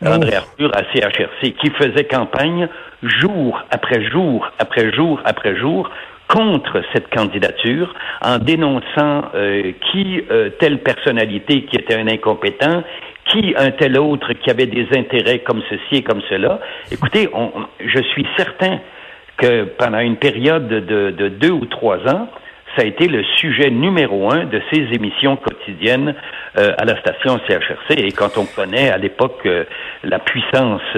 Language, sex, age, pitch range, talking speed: French, male, 60-79, 120-190 Hz, 155 wpm